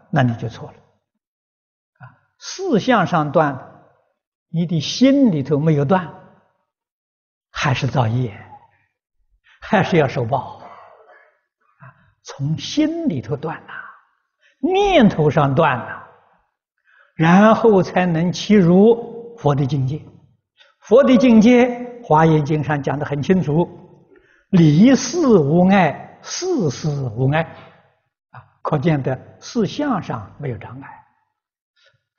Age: 60-79